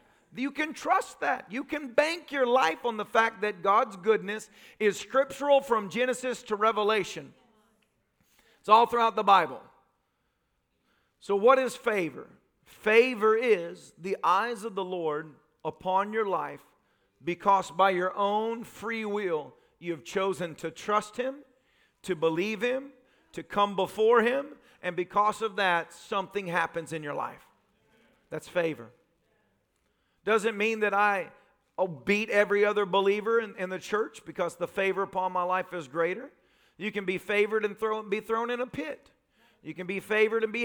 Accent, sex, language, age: American, male, English, 40-59